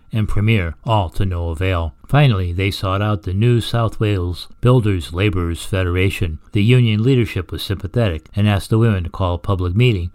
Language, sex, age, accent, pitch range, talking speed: English, male, 60-79, American, 95-125 Hz, 185 wpm